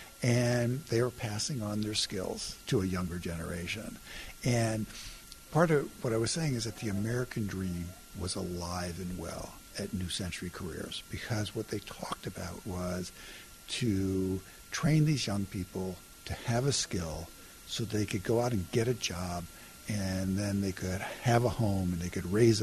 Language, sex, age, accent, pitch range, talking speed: English, male, 60-79, American, 100-140 Hz, 175 wpm